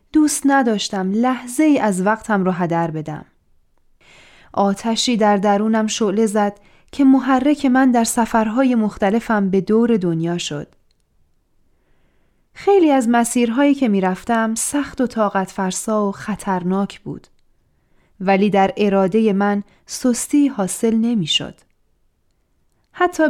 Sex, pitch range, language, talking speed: female, 190-255 Hz, Persian, 110 wpm